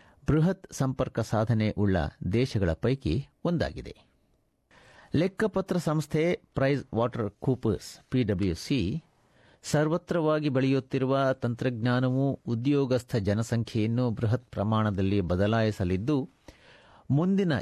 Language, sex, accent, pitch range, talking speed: Kannada, male, native, 110-140 Hz, 75 wpm